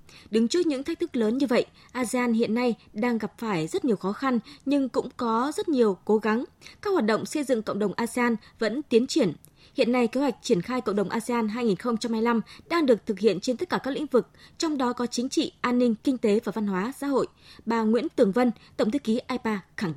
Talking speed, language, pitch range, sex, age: 235 wpm, Vietnamese, 210-265 Hz, female, 20-39